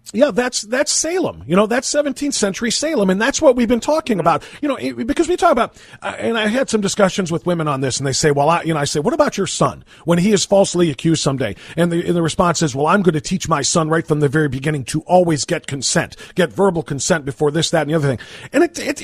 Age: 40-59